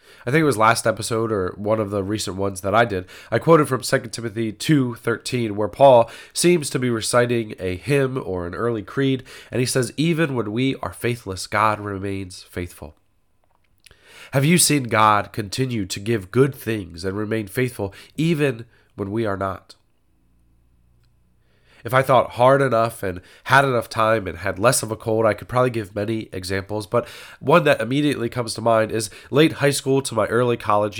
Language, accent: English, American